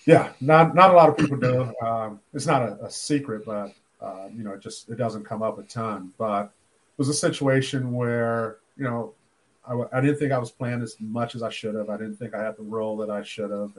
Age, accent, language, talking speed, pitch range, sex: 40-59, American, English, 250 wpm, 105-120 Hz, male